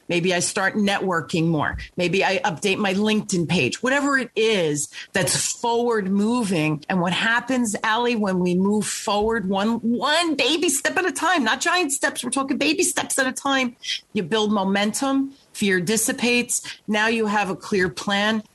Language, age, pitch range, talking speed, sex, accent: English, 40-59, 170-220 Hz, 170 wpm, female, American